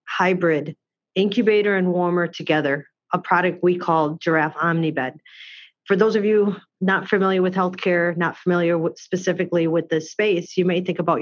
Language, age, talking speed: English, 40-59, 155 wpm